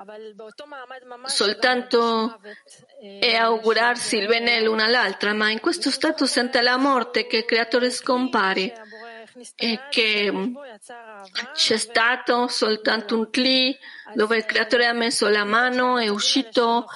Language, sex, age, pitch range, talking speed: Italian, female, 40-59, 210-260 Hz, 120 wpm